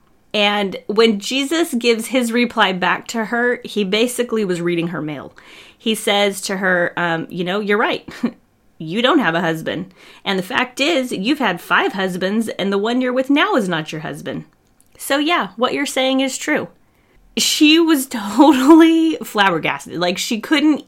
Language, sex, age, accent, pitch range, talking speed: English, female, 30-49, American, 195-265 Hz, 175 wpm